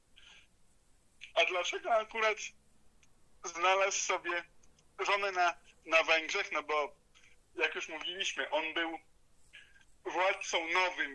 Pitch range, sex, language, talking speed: 165-210 Hz, male, Polish, 95 wpm